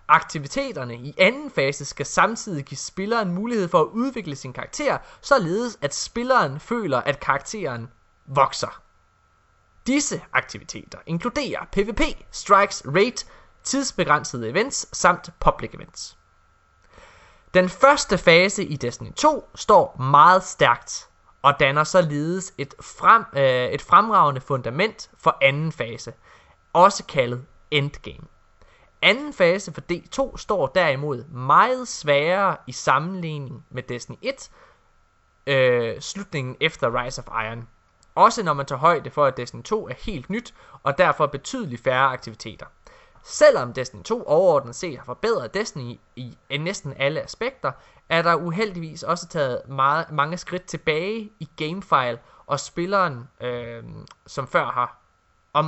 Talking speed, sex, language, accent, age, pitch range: 125 wpm, male, Danish, native, 20-39, 125-190 Hz